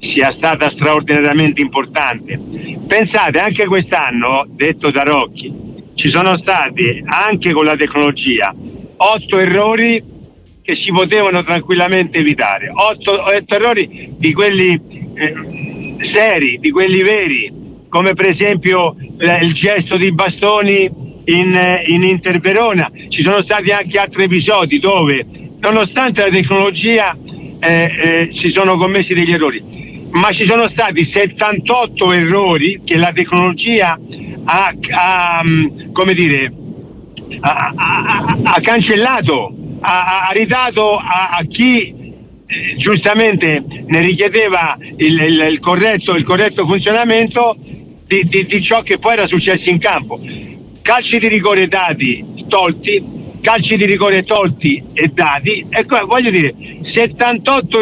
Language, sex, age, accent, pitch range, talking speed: Italian, male, 60-79, native, 165-210 Hz, 125 wpm